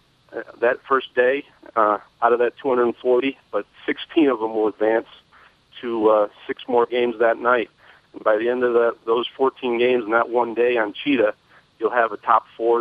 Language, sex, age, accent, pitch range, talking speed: English, male, 40-59, American, 110-125 Hz, 190 wpm